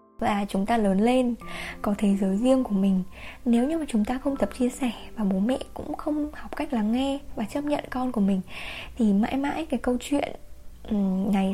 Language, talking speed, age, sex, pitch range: Vietnamese, 220 wpm, 10-29, female, 205-250 Hz